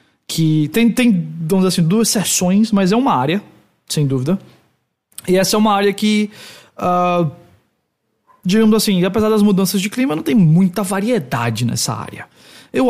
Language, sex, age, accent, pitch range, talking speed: English, male, 20-39, Brazilian, 160-205 Hz, 160 wpm